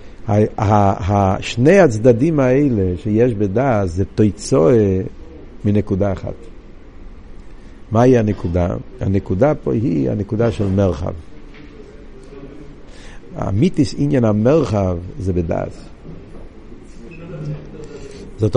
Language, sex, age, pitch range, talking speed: Hebrew, male, 60-79, 95-125 Hz, 85 wpm